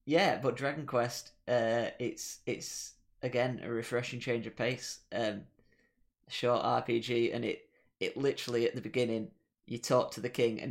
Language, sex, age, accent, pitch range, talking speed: English, male, 20-39, British, 115-125 Hz, 165 wpm